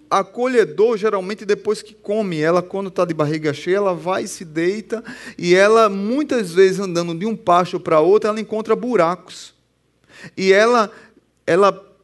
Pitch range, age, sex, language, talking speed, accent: 185-230 Hz, 30-49, male, Portuguese, 155 wpm, Brazilian